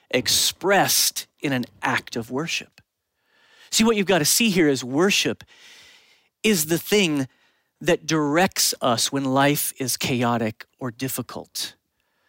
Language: English